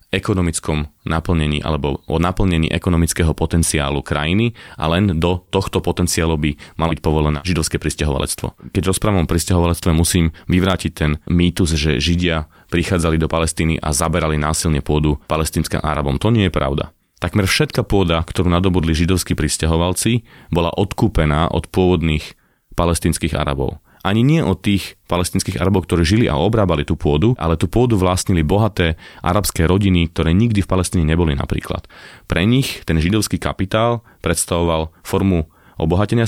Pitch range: 80-95 Hz